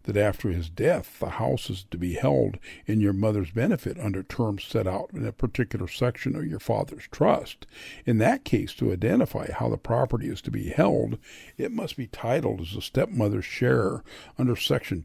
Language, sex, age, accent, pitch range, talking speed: English, male, 50-69, American, 100-130 Hz, 190 wpm